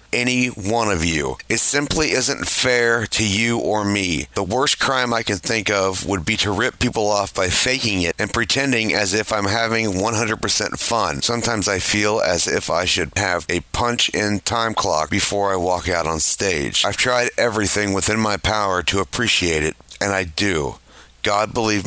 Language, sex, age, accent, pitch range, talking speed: English, male, 40-59, American, 95-115 Hz, 190 wpm